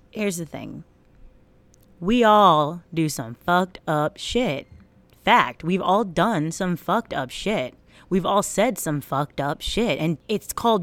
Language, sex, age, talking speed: English, female, 30-49, 155 wpm